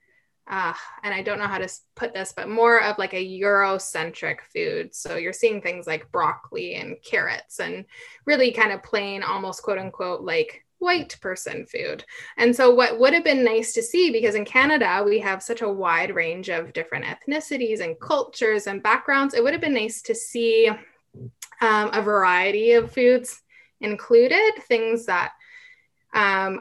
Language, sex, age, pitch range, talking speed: English, female, 10-29, 200-280 Hz, 175 wpm